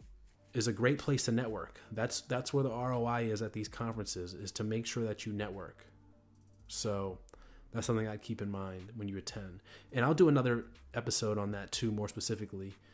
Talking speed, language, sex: 195 wpm, English, male